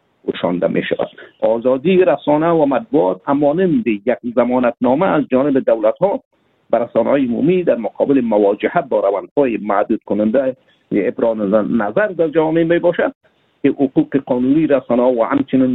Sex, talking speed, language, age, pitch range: male, 135 wpm, Persian, 50-69, 125-190 Hz